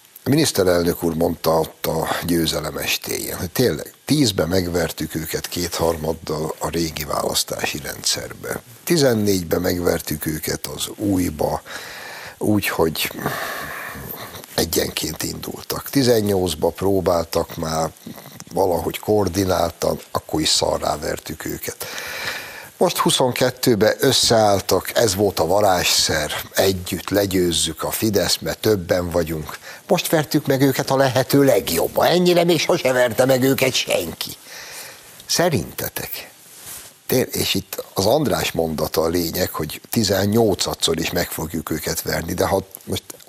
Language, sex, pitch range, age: Hungarian, male, 85-125 Hz, 60-79